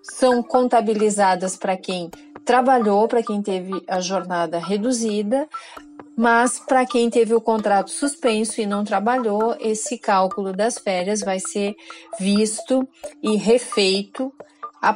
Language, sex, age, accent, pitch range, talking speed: Portuguese, female, 40-59, Brazilian, 200-255 Hz, 125 wpm